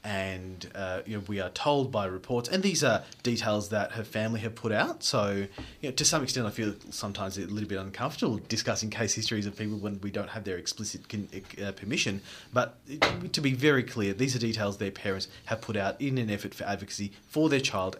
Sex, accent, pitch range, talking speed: male, Australian, 100-120 Hz, 225 wpm